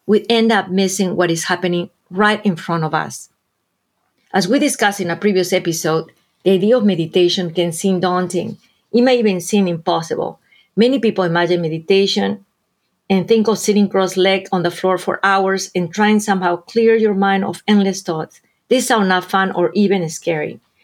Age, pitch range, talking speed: 40-59, 175-210 Hz, 175 wpm